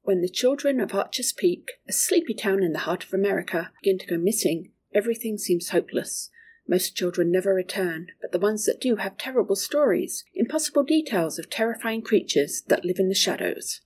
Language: English